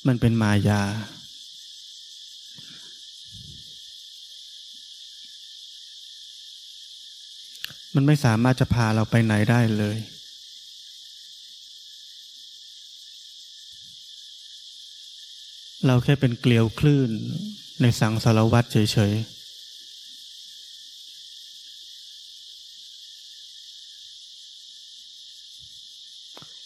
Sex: male